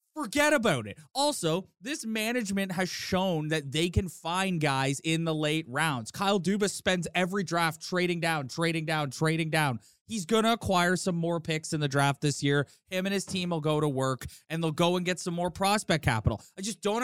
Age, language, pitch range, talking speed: 20-39, English, 165-235 Hz, 210 wpm